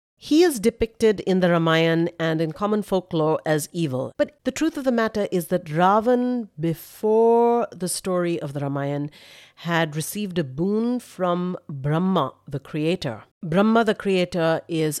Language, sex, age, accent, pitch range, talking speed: English, female, 50-69, Indian, 150-185 Hz, 155 wpm